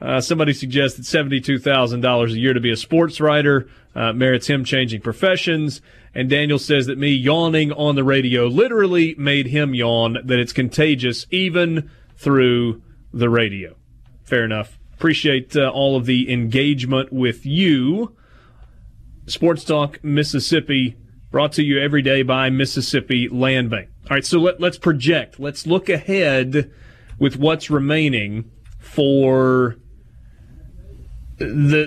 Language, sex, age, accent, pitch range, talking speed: English, male, 30-49, American, 125-155 Hz, 135 wpm